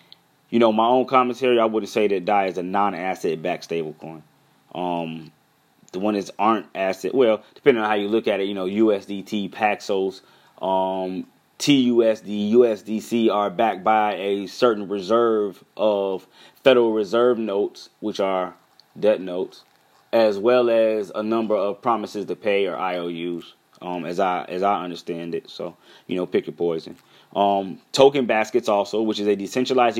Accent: American